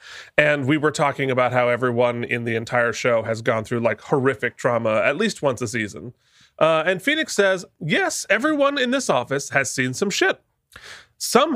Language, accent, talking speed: English, American, 185 wpm